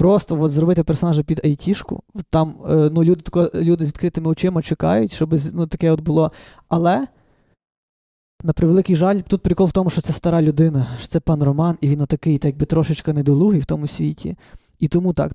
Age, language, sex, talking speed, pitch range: 20-39, Ukrainian, male, 185 wpm, 160-185 Hz